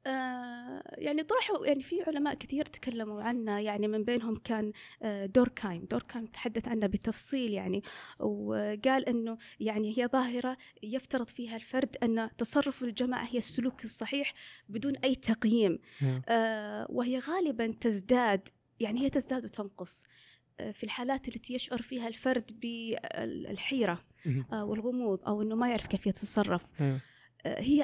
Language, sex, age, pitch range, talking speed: Arabic, female, 20-39, 210-270 Hz, 135 wpm